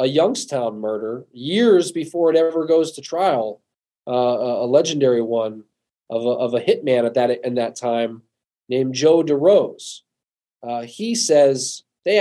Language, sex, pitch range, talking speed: English, male, 125-160 Hz, 150 wpm